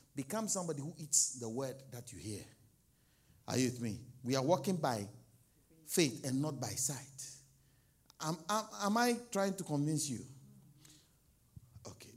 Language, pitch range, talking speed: English, 125-195 Hz, 155 wpm